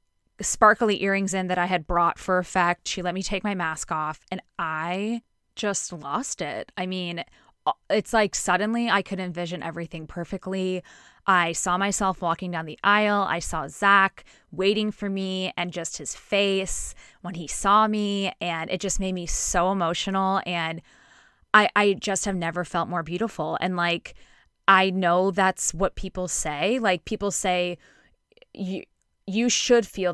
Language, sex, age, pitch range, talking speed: English, female, 20-39, 175-205 Hz, 165 wpm